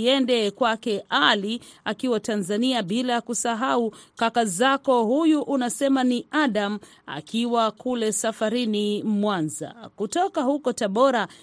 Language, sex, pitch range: Swahili, female, 200-255 Hz